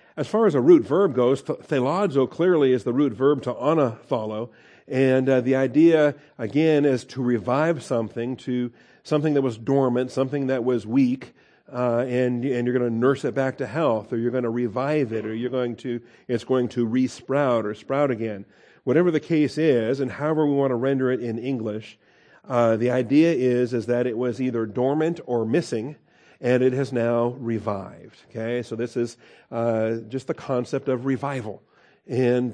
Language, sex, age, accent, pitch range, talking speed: English, male, 50-69, American, 120-135 Hz, 190 wpm